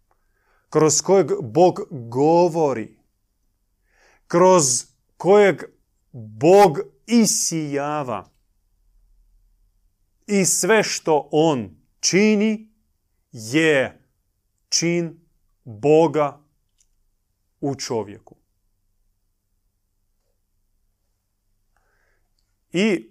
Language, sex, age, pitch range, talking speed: Croatian, male, 30-49, 100-155 Hz, 50 wpm